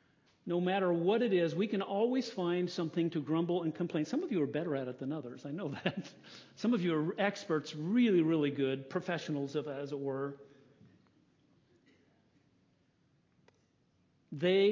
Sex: male